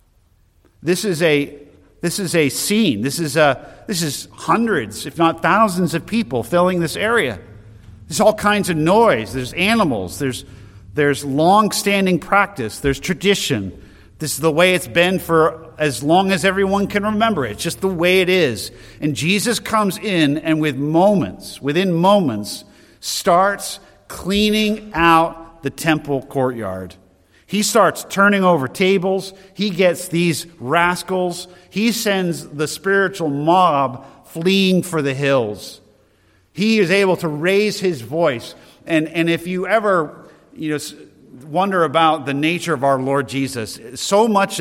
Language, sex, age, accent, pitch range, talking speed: English, male, 50-69, American, 140-190 Hz, 145 wpm